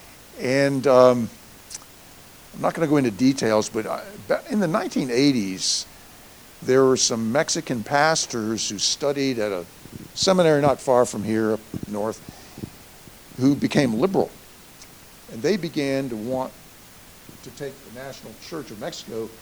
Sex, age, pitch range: male, 60-79, 110-145 Hz